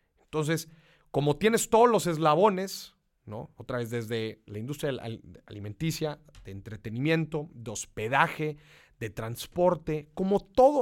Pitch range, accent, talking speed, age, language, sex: 120-155 Hz, Mexican, 115 wpm, 40-59, Spanish, male